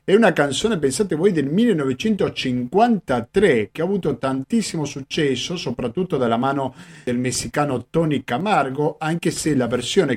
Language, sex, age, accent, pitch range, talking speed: Italian, male, 50-69, native, 130-180 Hz, 135 wpm